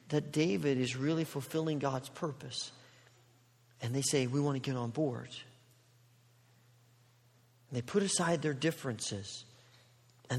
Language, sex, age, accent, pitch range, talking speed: English, male, 40-59, American, 125-170 Hz, 135 wpm